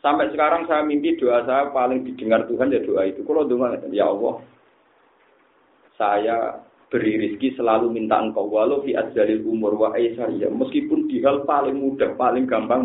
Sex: male